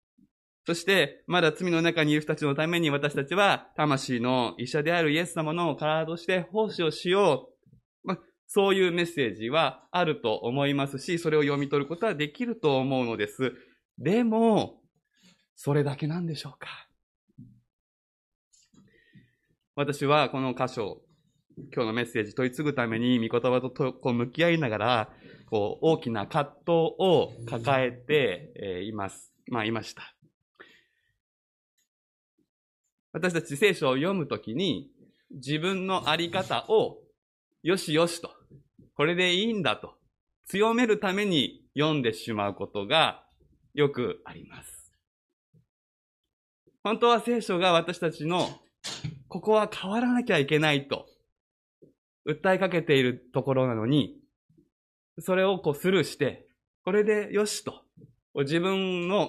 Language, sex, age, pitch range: Japanese, male, 20-39, 130-185 Hz